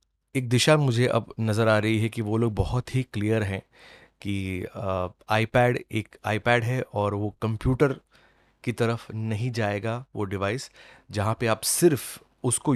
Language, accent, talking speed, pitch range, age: Hindi, native, 160 wpm, 105-120 Hz, 30-49